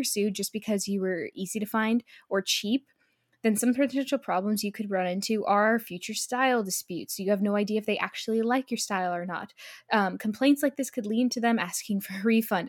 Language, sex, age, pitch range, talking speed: English, female, 10-29, 195-240 Hz, 220 wpm